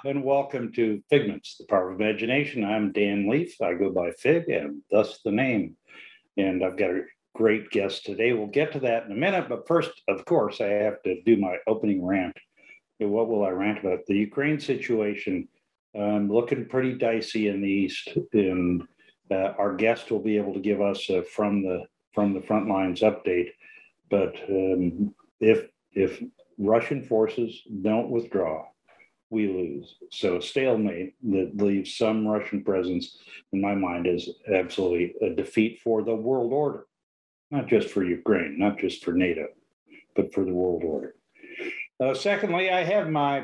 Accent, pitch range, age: American, 100-135 Hz, 60-79